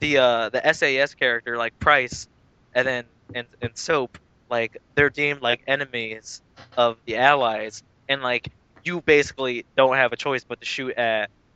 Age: 20-39